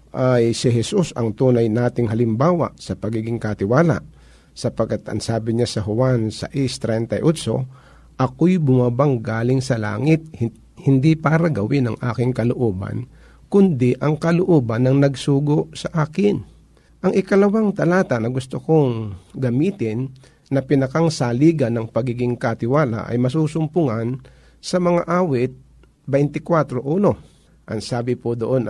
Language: Filipino